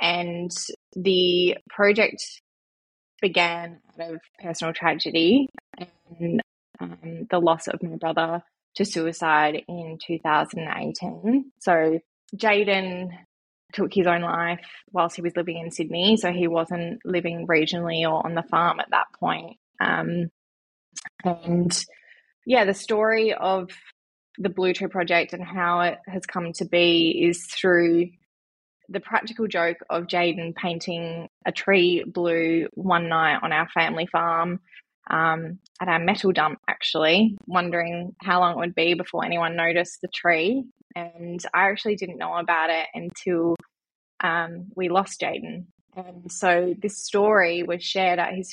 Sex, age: female, 20-39